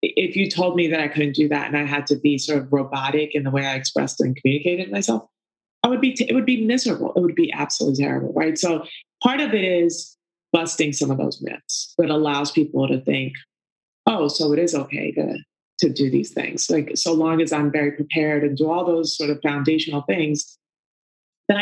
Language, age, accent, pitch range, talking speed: English, 30-49, American, 145-175 Hz, 220 wpm